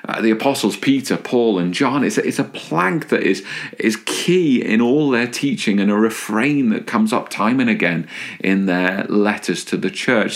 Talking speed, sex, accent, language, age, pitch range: 195 wpm, male, British, English, 40-59, 90-125 Hz